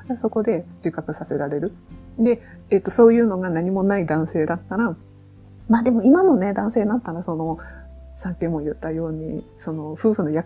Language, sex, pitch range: Japanese, female, 160-210 Hz